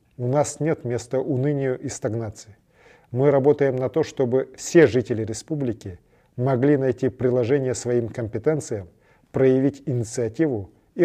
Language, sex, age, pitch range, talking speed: Russian, male, 40-59, 115-145 Hz, 125 wpm